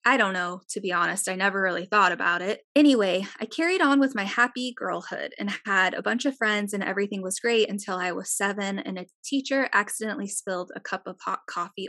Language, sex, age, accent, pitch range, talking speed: English, female, 10-29, American, 190-245 Hz, 220 wpm